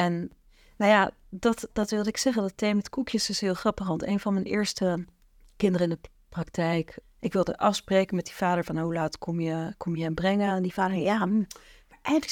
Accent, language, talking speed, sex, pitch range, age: Dutch, Dutch, 215 wpm, female, 170-225 Hz, 40-59